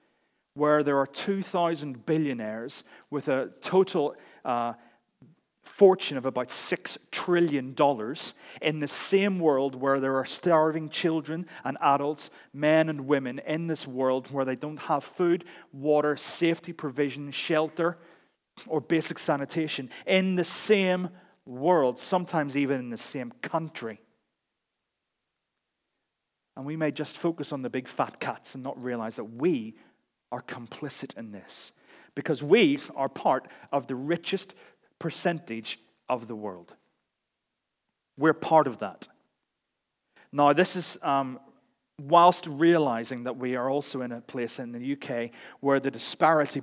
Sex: male